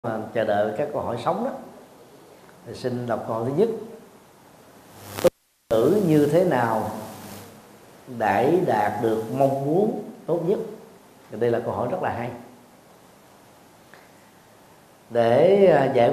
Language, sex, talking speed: Vietnamese, male, 125 wpm